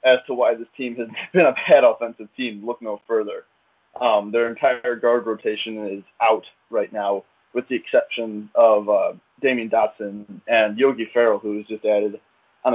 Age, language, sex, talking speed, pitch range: 20-39, English, male, 175 wpm, 110-130 Hz